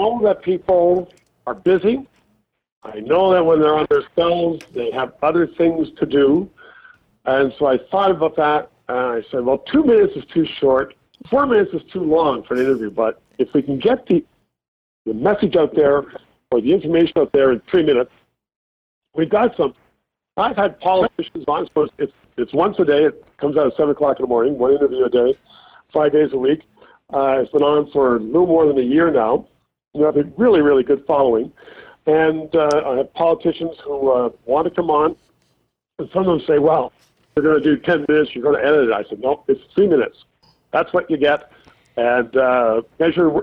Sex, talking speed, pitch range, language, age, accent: male, 205 wpm, 135-195 Hz, English, 50-69, American